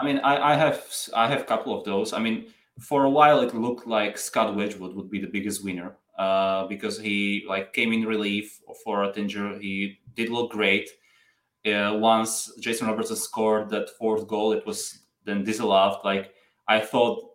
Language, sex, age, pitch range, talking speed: English, male, 20-39, 100-115 Hz, 185 wpm